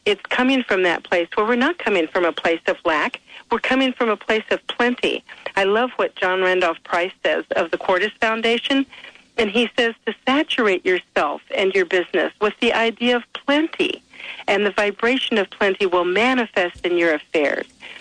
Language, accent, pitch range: English, American, 185-255 Hz